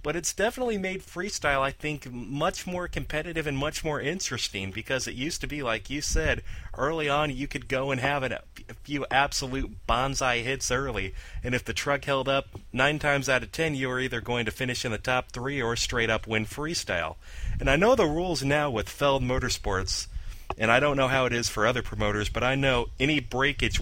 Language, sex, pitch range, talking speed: English, male, 115-145 Hz, 215 wpm